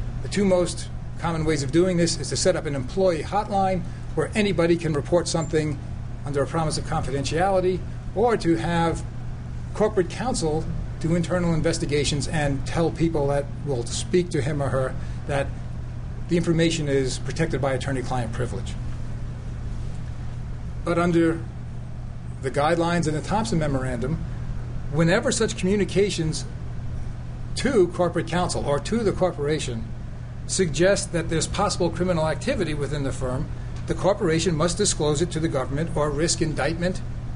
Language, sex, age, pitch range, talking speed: English, male, 40-59, 130-175 Hz, 145 wpm